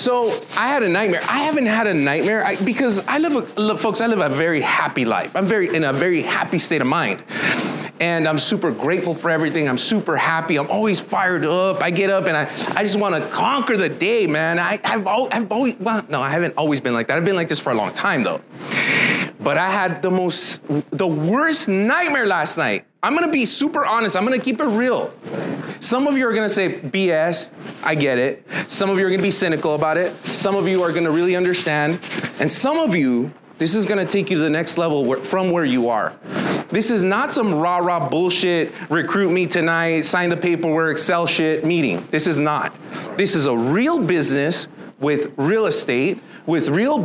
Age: 30-49